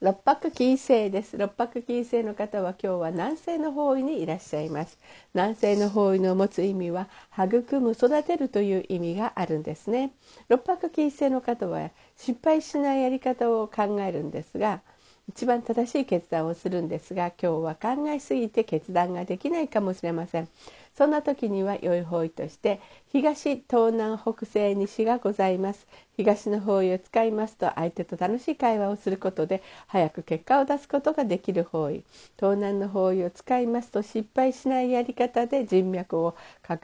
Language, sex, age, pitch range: Japanese, female, 50-69, 180-250 Hz